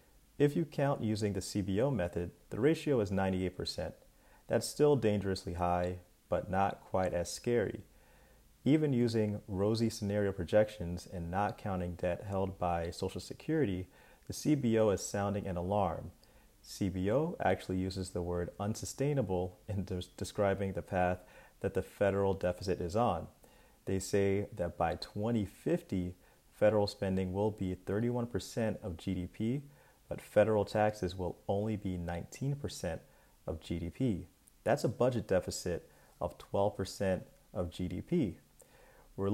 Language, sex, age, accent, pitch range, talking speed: English, male, 30-49, American, 90-110 Hz, 130 wpm